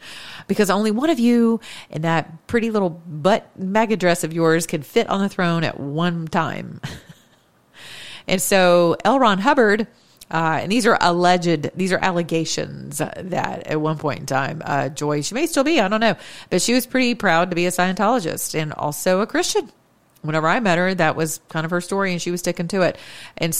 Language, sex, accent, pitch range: English, female, American, 155-195 Hz